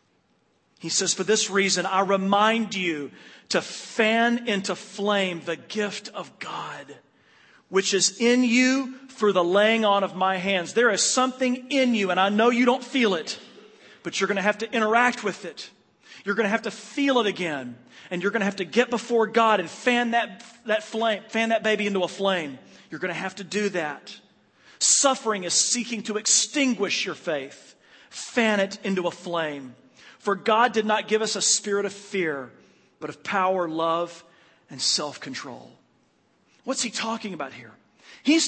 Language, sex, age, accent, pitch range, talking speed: English, male, 40-59, American, 185-235 Hz, 180 wpm